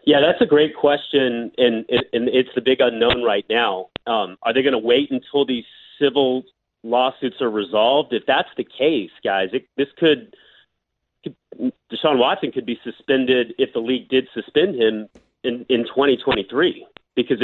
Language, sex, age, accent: English, male, 30-49, American